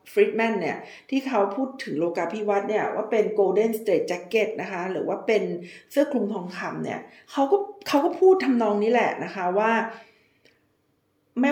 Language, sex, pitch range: Thai, female, 200-240 Hz